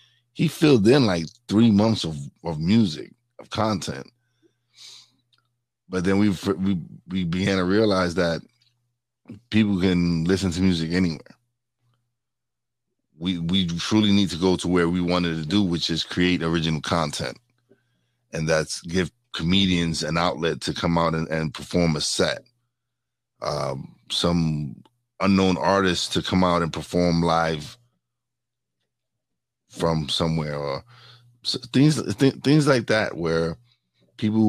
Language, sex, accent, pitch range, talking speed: English, male, American, 85-120 Hz, 130 wpm